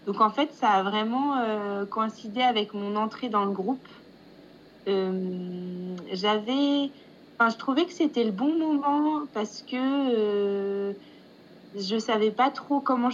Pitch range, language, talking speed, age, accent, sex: 205-255 Hz, French, 145 wpm, 20-39, French, female